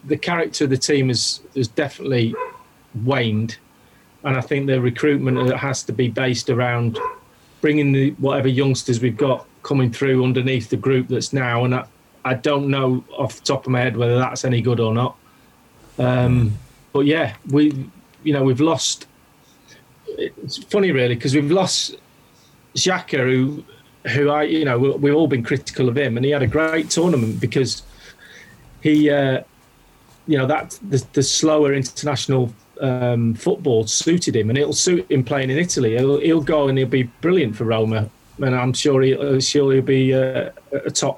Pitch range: 125-150 Hz